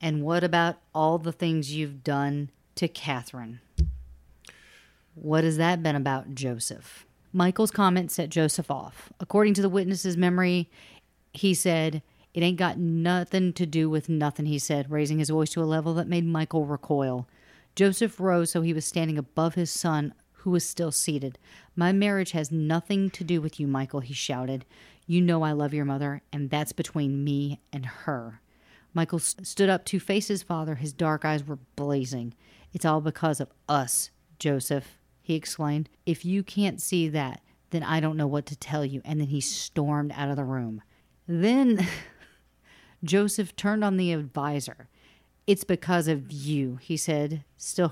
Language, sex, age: English, female, 40-59